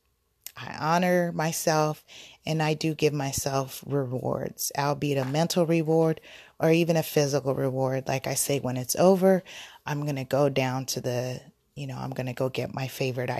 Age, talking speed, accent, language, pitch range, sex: 30-49, 180 wpm, American, English, 130-160 Hz, female